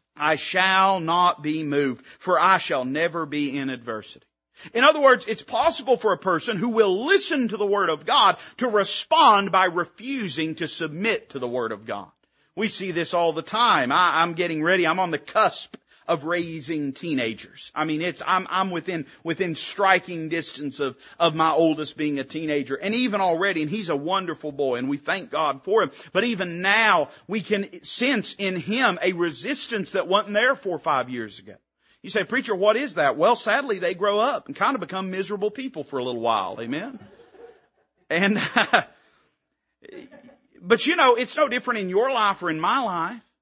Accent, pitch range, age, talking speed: American, 165-225 Hz, 40-59, 190 wpm